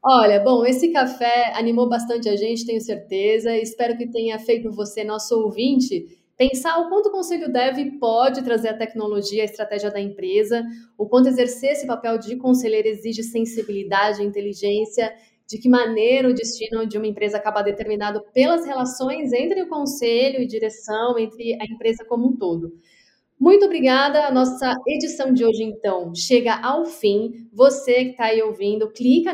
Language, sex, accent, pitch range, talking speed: Portuguese, female, Brazilian, 215-255 Hz, 170 wpm